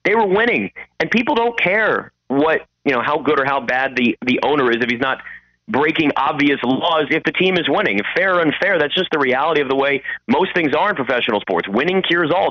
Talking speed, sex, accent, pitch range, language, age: 240 wpm, male, American, 130-180 Hz, English, 30-49